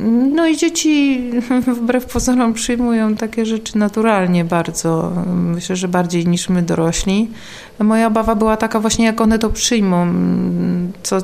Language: Polish